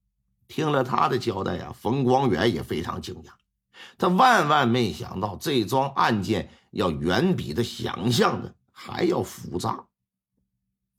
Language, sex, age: Chinese, male, 50-69